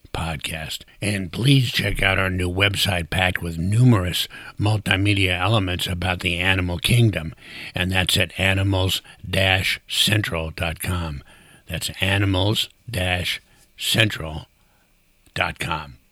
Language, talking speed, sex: English, 85 wpm, male